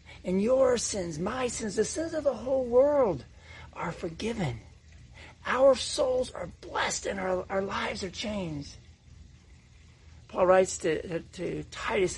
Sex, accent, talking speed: male, American, 145 wpm